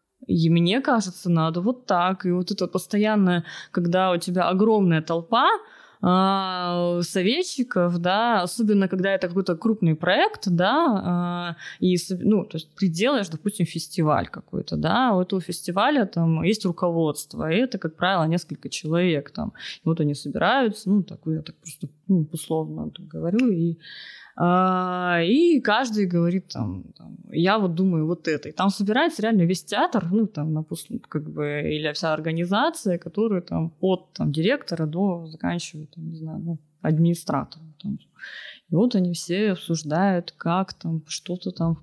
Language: Russian